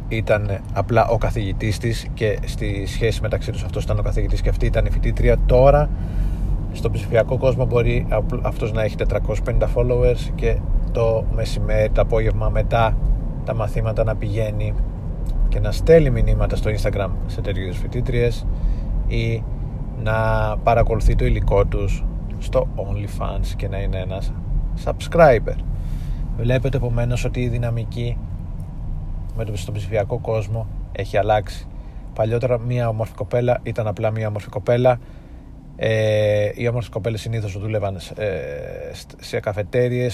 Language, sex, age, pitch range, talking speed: Greek, male, 30-49, 100-115 Hz, 130 wpm